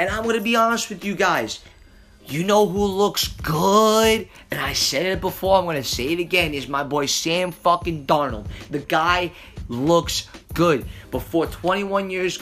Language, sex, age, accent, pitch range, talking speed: English, male, 20-39, American, 145-185 Hz, 175 wpm